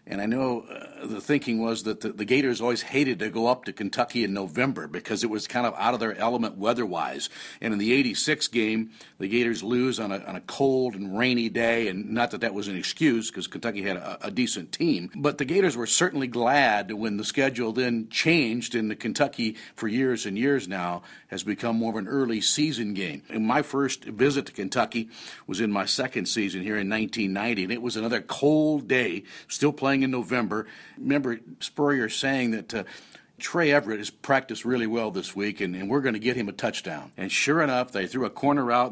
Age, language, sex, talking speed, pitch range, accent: 50-69, English, male, 215 wpm, 110-135 Hz, American